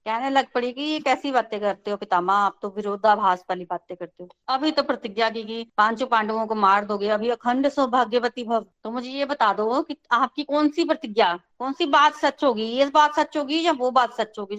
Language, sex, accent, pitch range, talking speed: Hindi, female, native, 225-295 Hz, 220 wpm